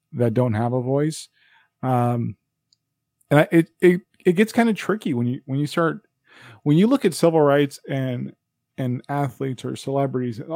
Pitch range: 125-150 Hz